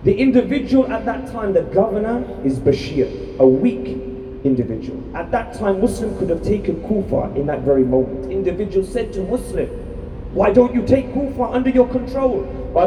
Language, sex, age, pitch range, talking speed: Urdu, male, 30-49, 120-195 Hz, 175 wpm